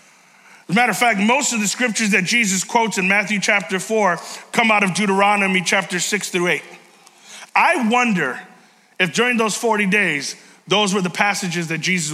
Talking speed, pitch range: 185 wpm, 185-235 Hz